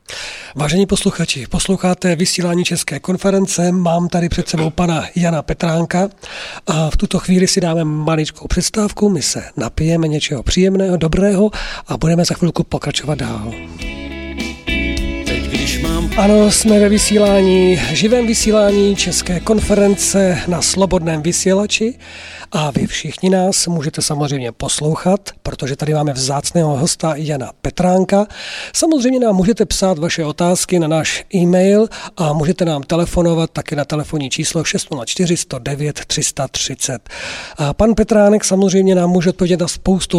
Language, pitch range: Czech, 155-185 Hz